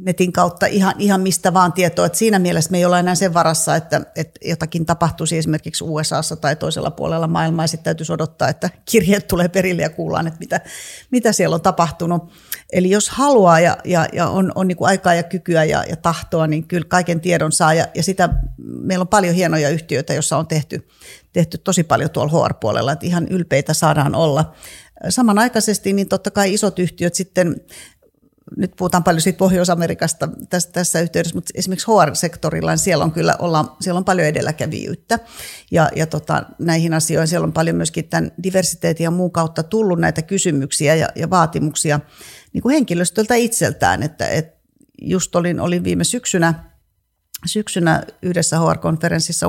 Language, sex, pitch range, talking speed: Finnish, female, 160-185 Hz, 175 wpm